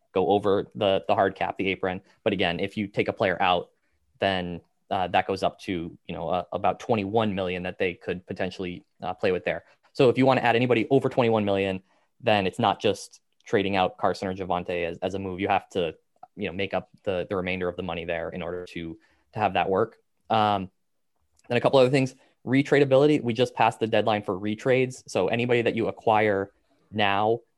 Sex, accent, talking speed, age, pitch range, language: male, American, 220 wpm, 20-39, 95-120 Hz, English